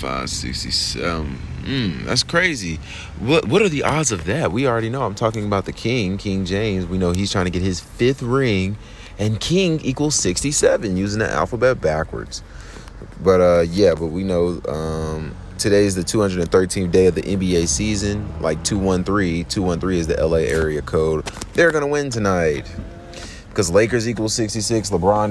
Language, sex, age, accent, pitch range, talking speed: English, male, 30-49, American, 85-100 Hz, 170 wpm